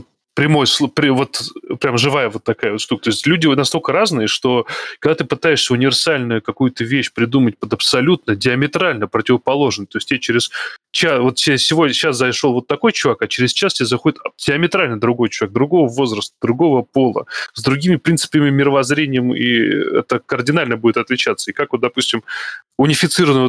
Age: 20-39